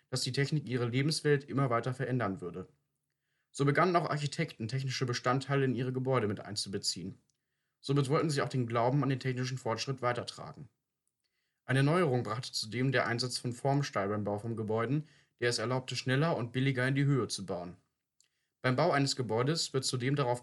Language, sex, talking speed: German, male, 180 wpm